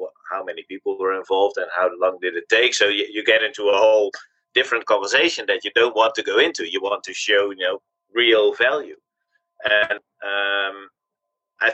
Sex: male